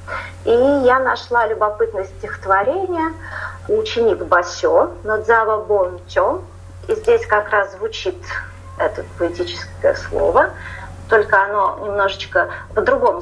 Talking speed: 95 wpm